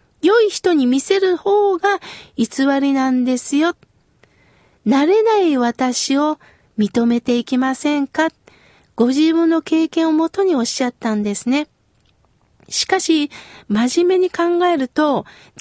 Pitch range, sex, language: 235-325 Hz, female, Japanese